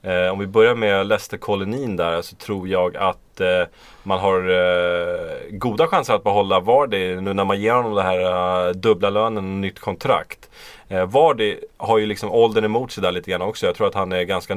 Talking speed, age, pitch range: 195 wpm, 30-49, 90-115 Hz